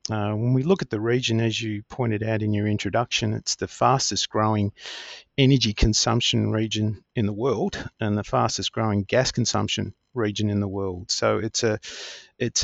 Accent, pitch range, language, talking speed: Australian, 105-120 Hz, English, 170 wpm